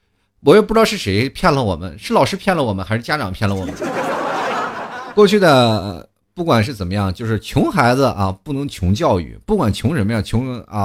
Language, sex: Chinese, male